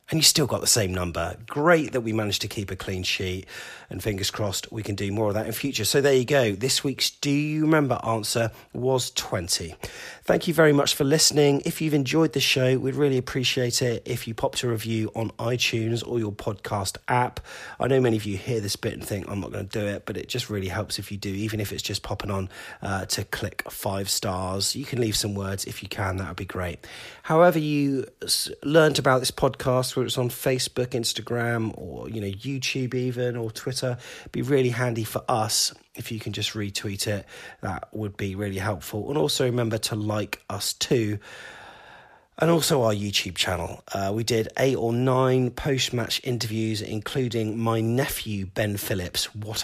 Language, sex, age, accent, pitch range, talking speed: English, male, 30-49, British, 105-130 Hz, 210 wpm